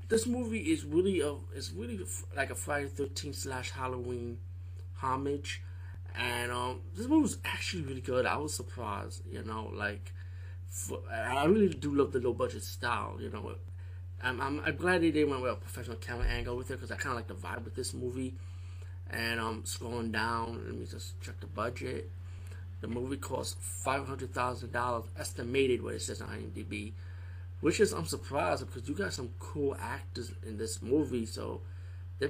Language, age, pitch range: English, 30-49, 90-115 Hz